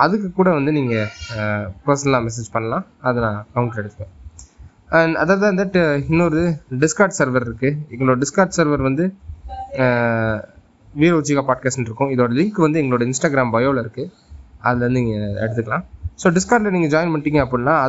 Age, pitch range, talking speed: 20-39, 120-165 Hz, 150 wpm